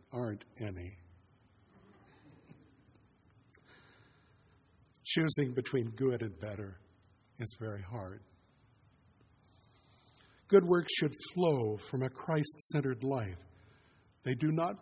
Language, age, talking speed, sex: English, 60-79, 85 wpm, male